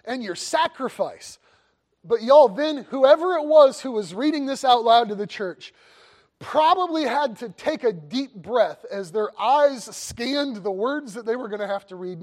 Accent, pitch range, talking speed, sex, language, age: American, 210-290 Hz, 190 wpm, male, English, 30-49